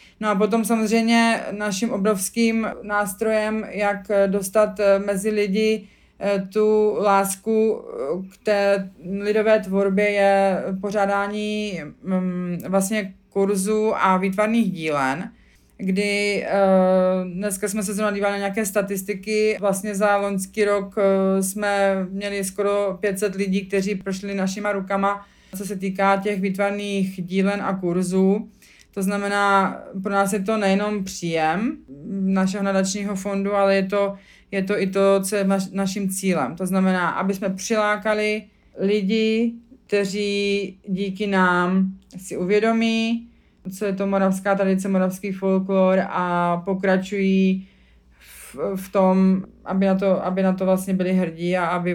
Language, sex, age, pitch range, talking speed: Czech, female, 30-49, 190-205 Hz, 125 wpm